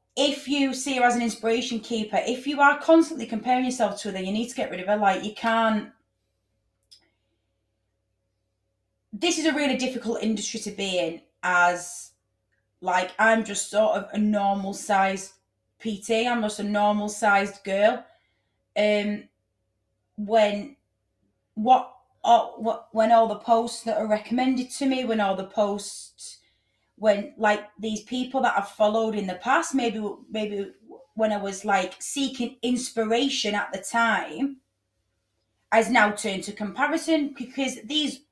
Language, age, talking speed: English, 30-49, 150 wpm